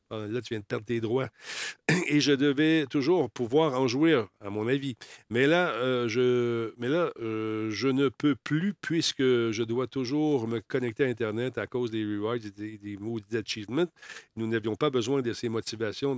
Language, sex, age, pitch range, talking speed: French, male, 50-69, 105-130 Hz, 195 wpm